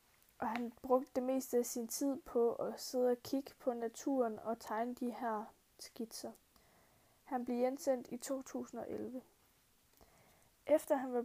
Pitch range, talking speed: 235-270 Hz, 150 wpm